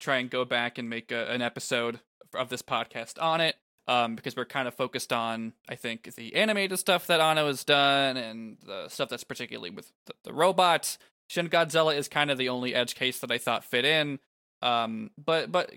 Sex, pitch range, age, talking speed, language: male, 120-145 Hz, 20-39, 215 wpm, English